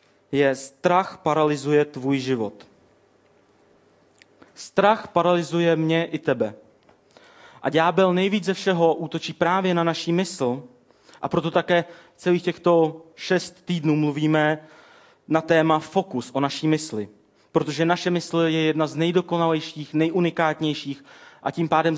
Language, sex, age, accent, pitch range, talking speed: Czech, male, 30-49, native, 145-170 Hz, 125 wpm